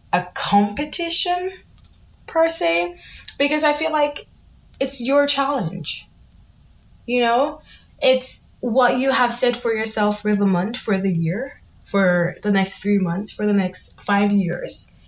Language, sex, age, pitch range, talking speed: English, female, 10-29, 190-250 Hz, 145 wpm